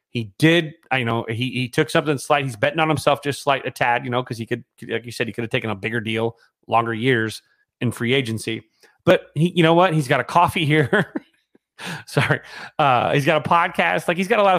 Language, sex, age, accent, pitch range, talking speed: English, male, 30-49, American, 125-170 Hz, 245 wpm